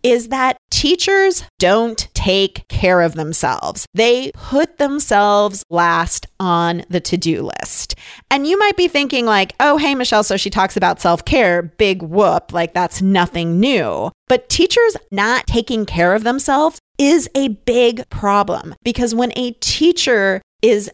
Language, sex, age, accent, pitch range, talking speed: English, female, 30-49, American, 180-255 Hz, 150 wpm